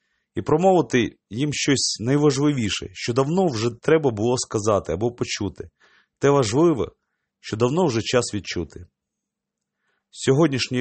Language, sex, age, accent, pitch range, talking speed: Ukrainian, male, 30-49, native, 105-145 Hz, 120 wpm